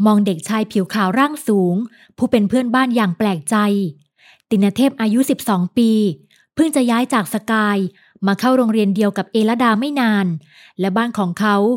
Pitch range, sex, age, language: 205-240 Hz, female, 20-39, Thai